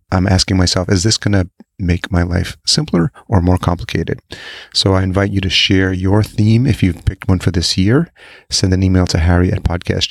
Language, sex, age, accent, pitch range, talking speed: English, male, 30-49, American, 90-105 Hz, 215 wpm